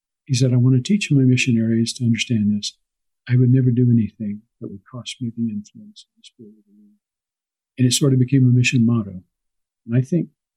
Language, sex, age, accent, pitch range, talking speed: English, male, 50-69, American, 110-130 Hz, 220 wpm